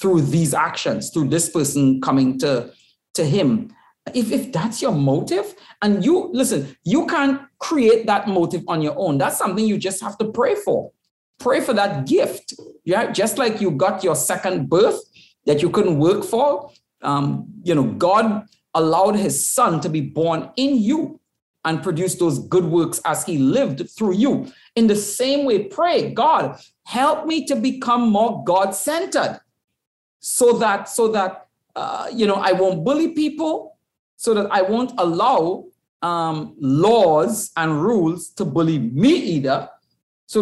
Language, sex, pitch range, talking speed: English, male, 170-260 Hz, 165 wpm